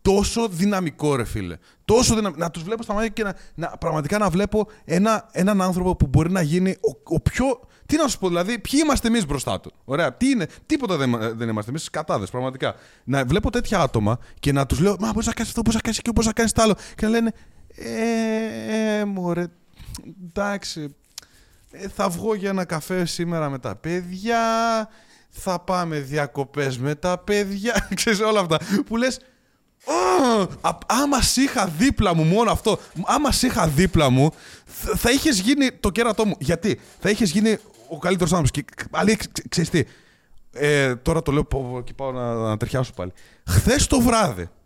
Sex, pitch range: male, 135-220 Hz